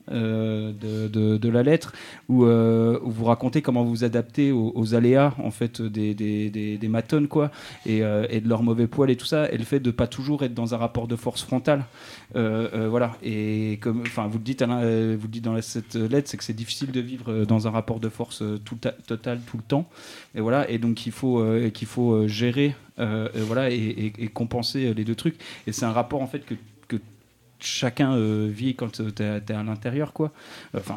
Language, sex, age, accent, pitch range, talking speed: French, male, 30-49, French, 110-125 Hz, 235 wpm